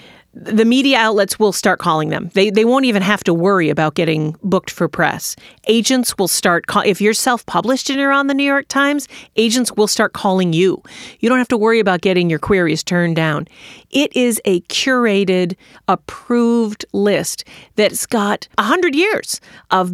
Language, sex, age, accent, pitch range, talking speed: English, female, 40-59, American, 180-240 Hz, 180 wpm